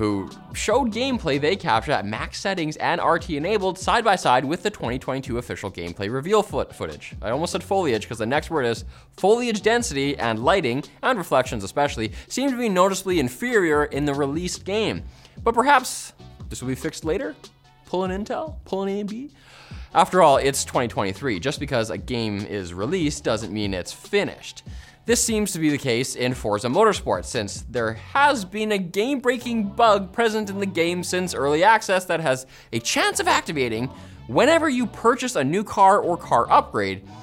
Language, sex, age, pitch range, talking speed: English, male, 20-39, 130-205 Hz, 175 wpm